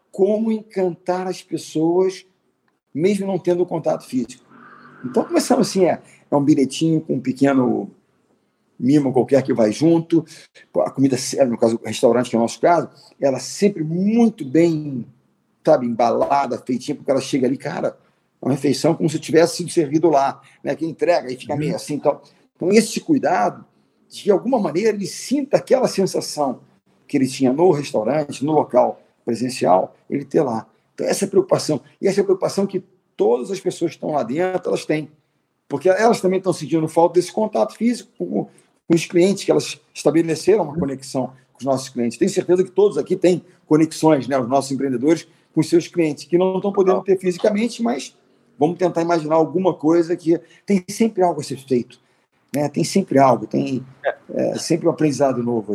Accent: Brazilian